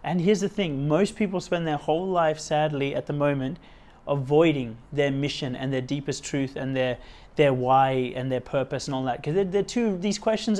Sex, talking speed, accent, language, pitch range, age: male, 210 wpm, Australian, English, 140-175 Hz, 30-49